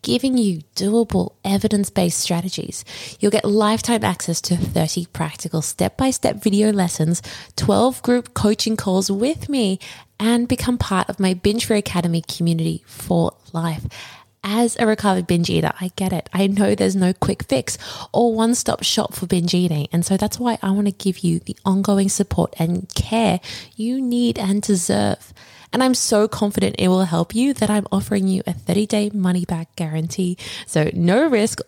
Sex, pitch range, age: female, 170-215 Hz, 20-39